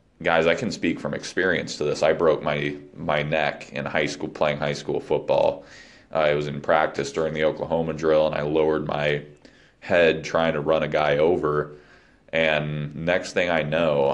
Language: English